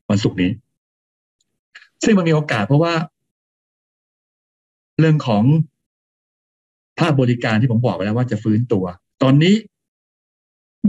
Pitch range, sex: 110-140 Hz, male